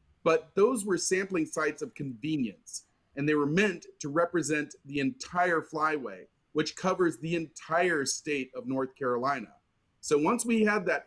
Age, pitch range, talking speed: 40-59, 135-170 Hz, 155 wpm